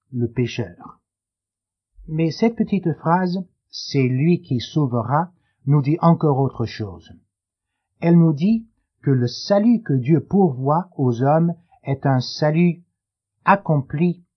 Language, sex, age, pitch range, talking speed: French, male, 50-69, 120-175 Hz, 125 wpm